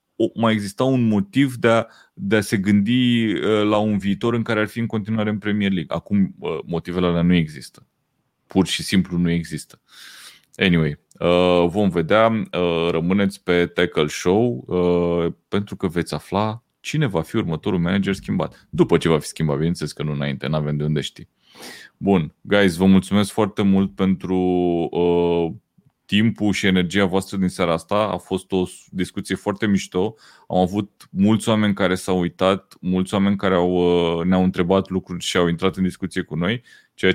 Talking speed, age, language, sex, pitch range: 180 wpm, 30-49, Romanian, male, 85-105 Hz